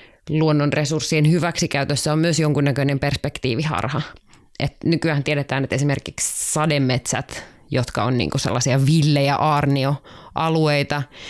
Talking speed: 95 wpm